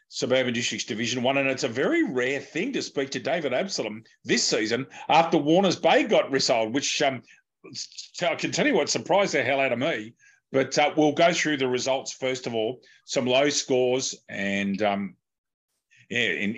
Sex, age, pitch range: male, 40-59, 105-140 Hz